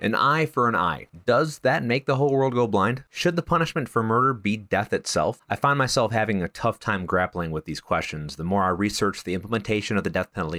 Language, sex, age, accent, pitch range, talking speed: English, male, 30-49, American, 90-115 Hz, 240 wpm